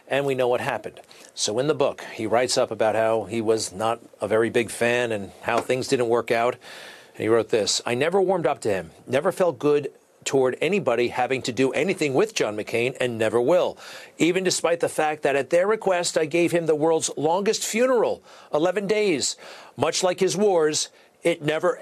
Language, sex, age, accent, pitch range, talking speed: English, male, 40-59, American, 115-175 Hz, 205 wpm